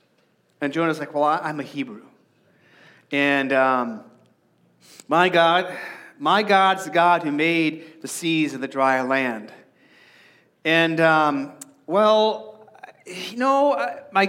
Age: 40-59